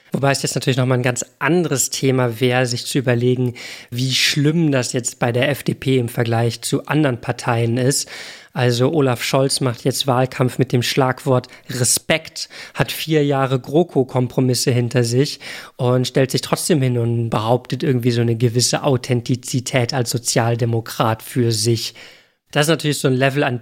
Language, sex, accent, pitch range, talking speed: German, male, German, 125-150 Hz, 165 wpm